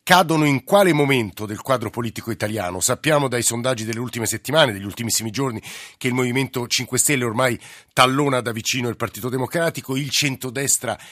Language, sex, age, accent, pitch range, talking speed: Italian, male, 50-69, native, 115-140 Hz, 165 wpm